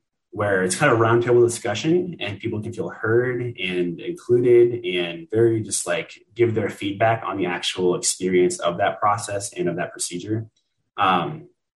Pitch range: 90-120 Hz